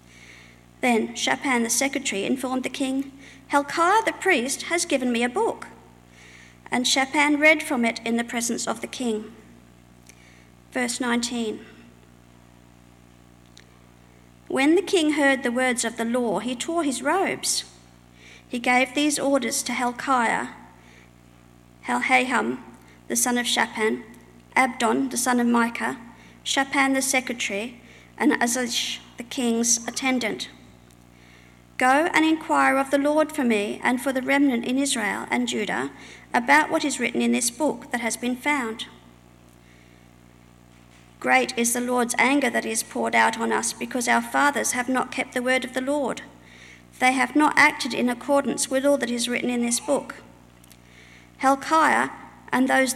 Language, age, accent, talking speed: English, 50-69, Australian, 150 wpm